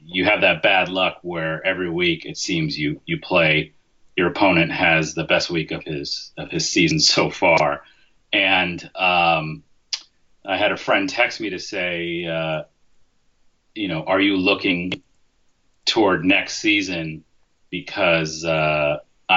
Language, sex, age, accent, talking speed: English, male, 30-49, American, 145 wpm